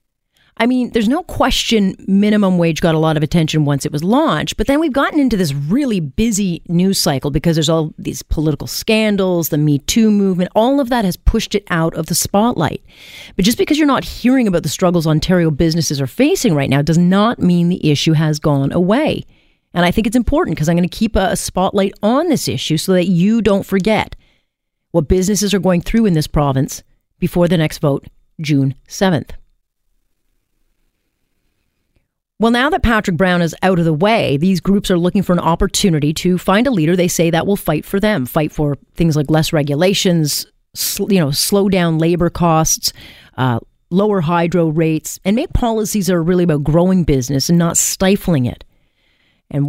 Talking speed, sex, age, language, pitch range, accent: 195 wpm, female, 40-59, English, 155-205 Hz, American